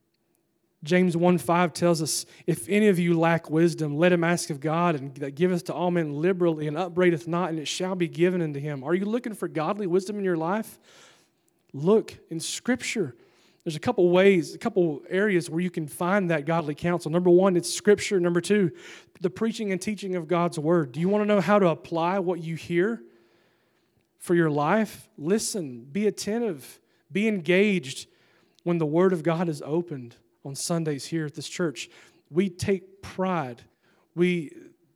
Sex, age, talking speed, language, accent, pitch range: male, 30-49, 185 wpm, English, American, 155-185 Hz